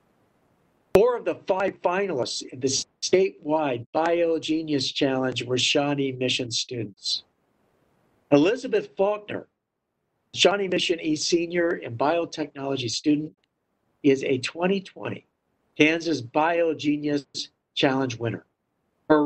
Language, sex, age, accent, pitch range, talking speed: English, male, 60-79, American, 135-165 Hz, 95 wpm